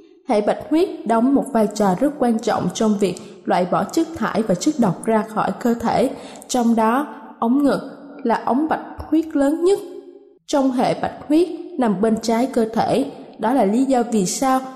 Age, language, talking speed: 20-39, Vietnamese, 195 wpm